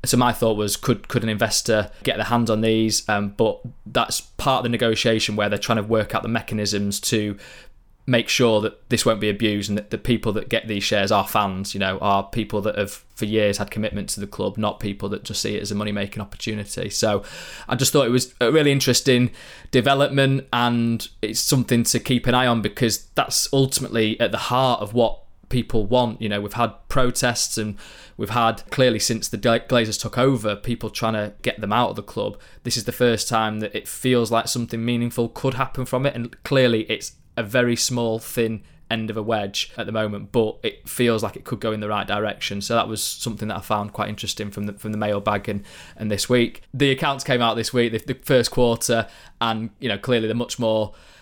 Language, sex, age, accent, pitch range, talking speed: English, male, 20-39, British, 105-120 Hz, 225 wpm